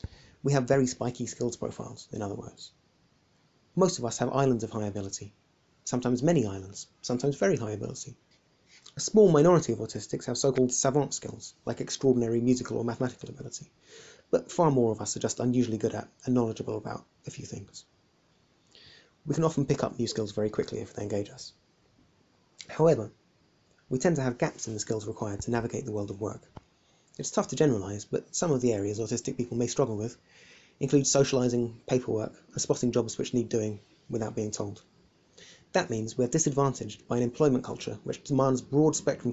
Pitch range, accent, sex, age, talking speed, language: 110-140 Hz, British, male, 30-49, 190 wpm, English